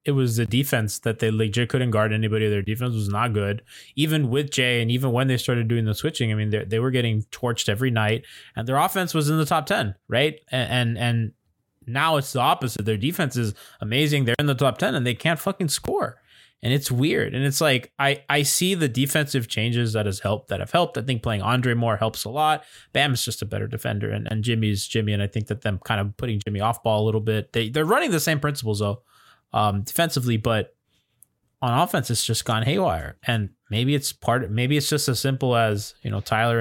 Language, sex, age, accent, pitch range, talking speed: English, male, 20-39, American, 110-135 Hz, 240 wpm